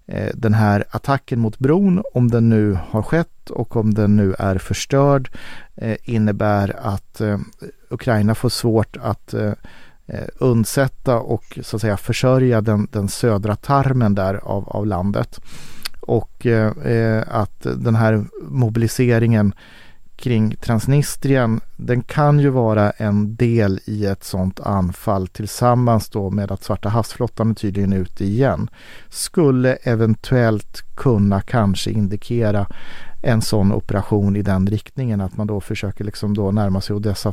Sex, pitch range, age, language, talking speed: male, 105-120 Hz, 40-59, Swedish, 130 wpm